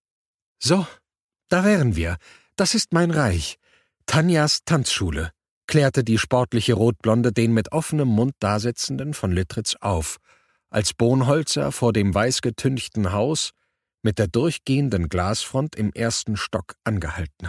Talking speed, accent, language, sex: 125 wpm, German, German, male